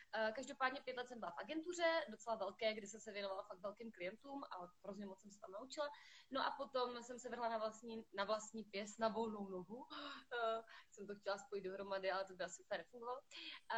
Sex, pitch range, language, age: female, 185-230 Hz, Slovak, 20-39